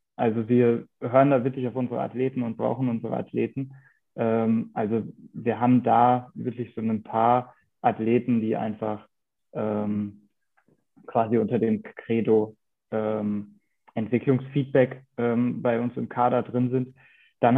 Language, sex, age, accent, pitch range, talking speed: German, male, 20-39, German, 110-125 Hz, 120 wpm